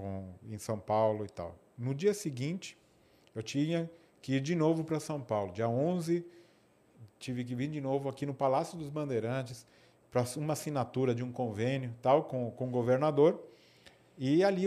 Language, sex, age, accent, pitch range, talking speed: Portuguese, male, 40-59, Brazilian, 115-145 Hz, 170 wpm